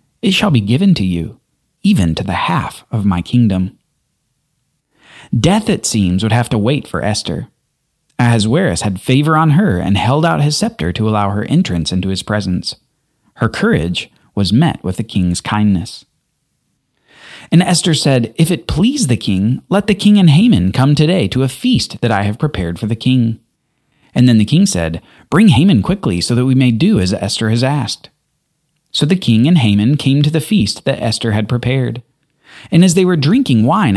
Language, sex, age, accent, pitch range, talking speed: English, male, 30-49, American, 110-170 Hz, 190 wpm